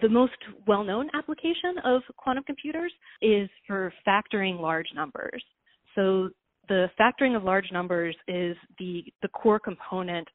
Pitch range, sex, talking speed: 180-210 Hz, female, 135 wpm